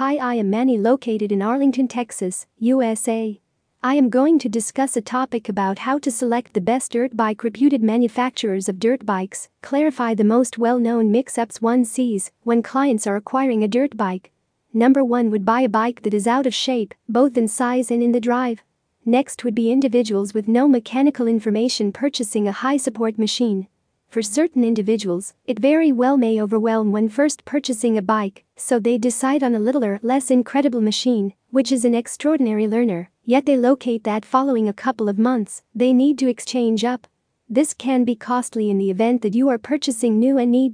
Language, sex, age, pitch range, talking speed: English, female, 40-59, 220-260 Hz, 190 wpm